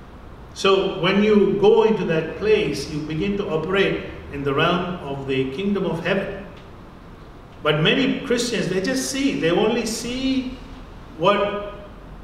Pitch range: 150-200 Hz